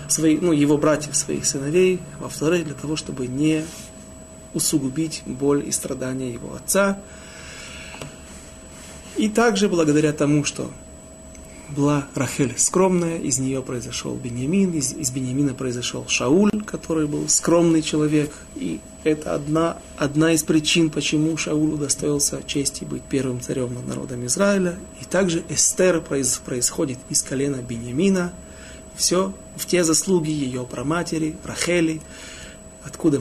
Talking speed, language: 130 wpm, Russian